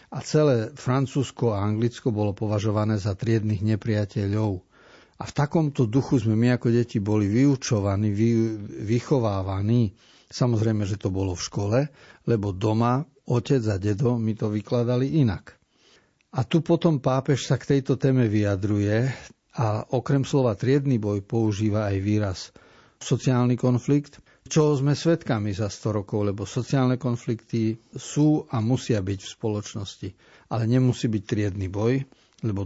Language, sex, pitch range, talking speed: Slovak, male, 105-130 Hz, 140 wpm